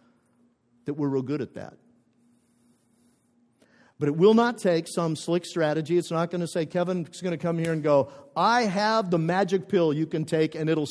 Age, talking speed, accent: 50-69, 200 wpm, American